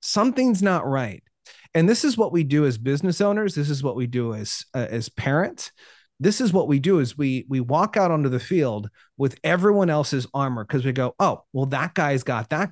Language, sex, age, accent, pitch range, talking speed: English, male, 30-49, American, 125-190 Hz, 220 wpm